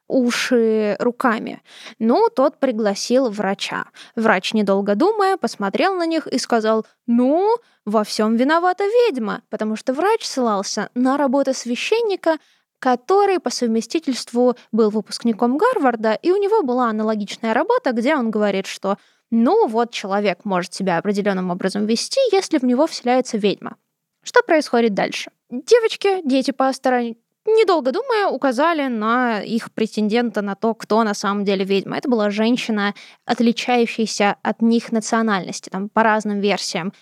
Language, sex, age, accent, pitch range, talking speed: Russian, female, 20-39, native, 210-275 Hz, 140 wpm